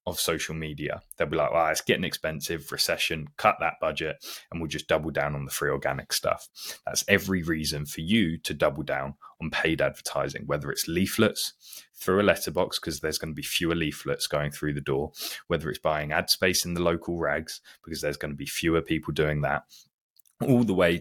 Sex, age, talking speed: male, 20-39, 210 wpm